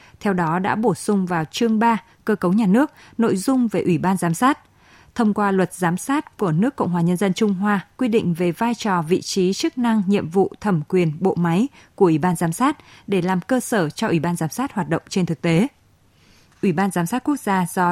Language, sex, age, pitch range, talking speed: Vietnamese, female, 20-39, 175-230 Hz, 245 wpm